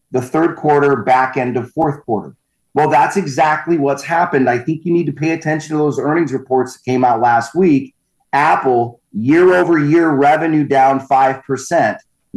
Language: English